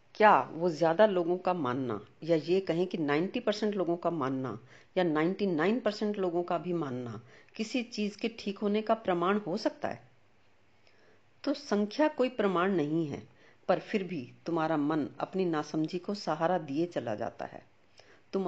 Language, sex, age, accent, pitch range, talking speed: Hindi, female, 50-69, native, 155-200 Hz, 160 wpm